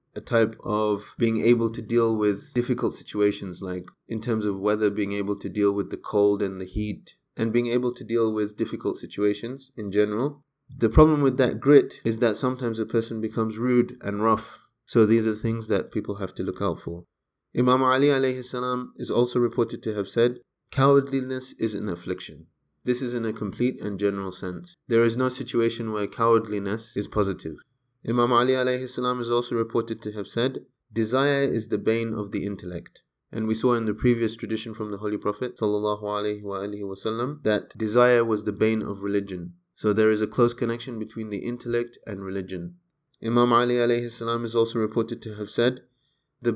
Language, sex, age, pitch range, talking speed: English, male, 30-49, 105-125 Hz, 185 wpm